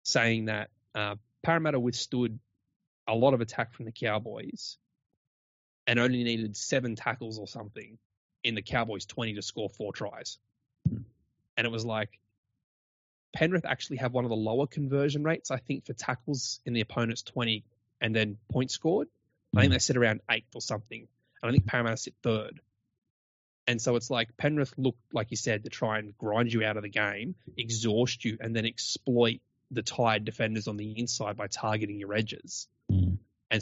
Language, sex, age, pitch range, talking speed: English, male, 20-39, 105-125 Hz, 180 wpm